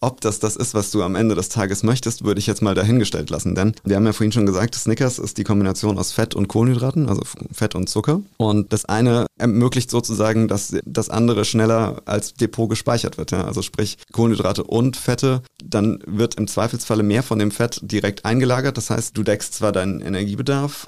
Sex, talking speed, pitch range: male, 205 wpm, 105-120 Hz